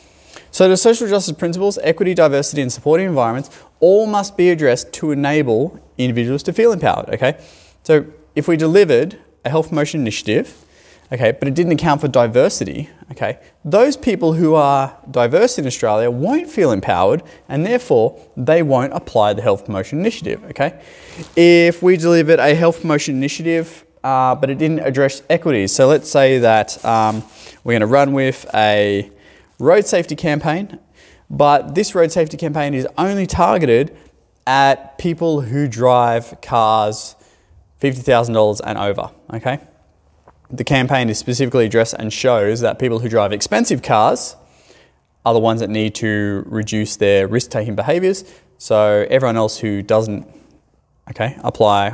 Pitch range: 110-165 Hz